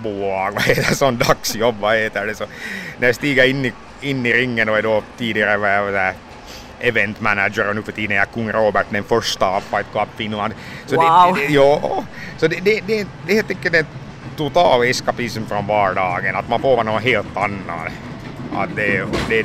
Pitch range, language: 100-125 Hz, Finnish